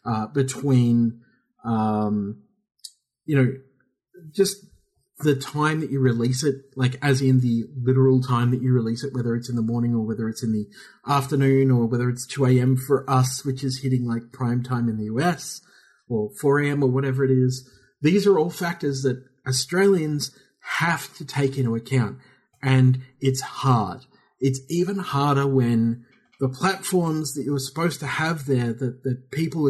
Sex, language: male, English